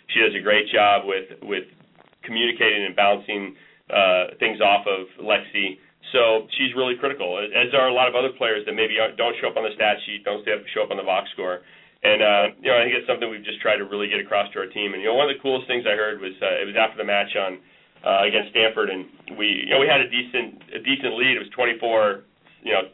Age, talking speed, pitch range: 40-59, 255 wpm, 105-130 Hz